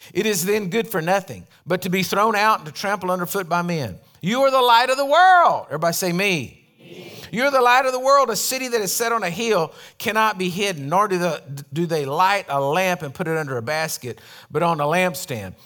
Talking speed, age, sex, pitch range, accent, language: 235 wpm, 50-69, male, 175-245 Hz, American, English